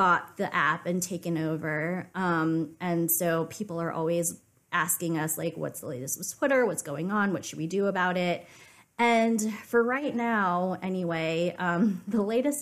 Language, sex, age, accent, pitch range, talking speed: English, female, 20-39, American, 155-185 Hz, 175 wpm